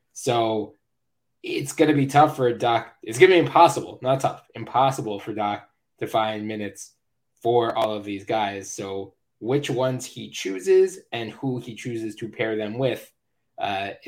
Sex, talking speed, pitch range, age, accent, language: male, 170 wpm, 110-125 Hz, 10-29, American, English